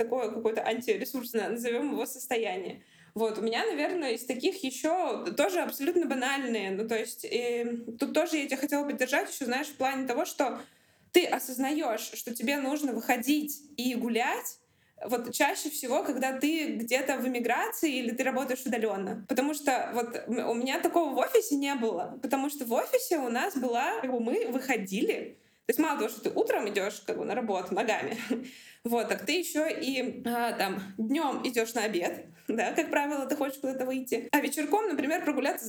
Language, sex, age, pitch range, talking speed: Russian, female, 20-39, 230-295 Hz, 180 wpm